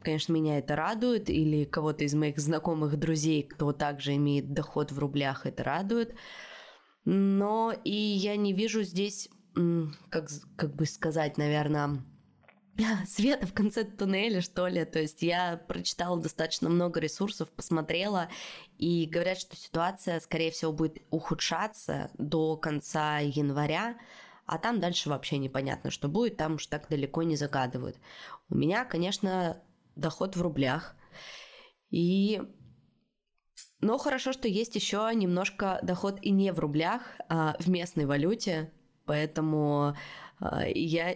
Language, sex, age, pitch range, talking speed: Russian, female, 20-39, 155-205 Hz, 130 wpm